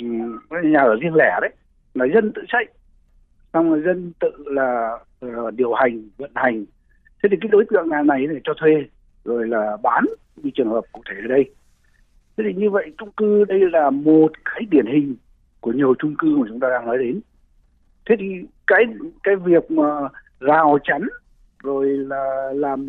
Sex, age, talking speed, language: male, 60-79, 185 wpm, Vietnamese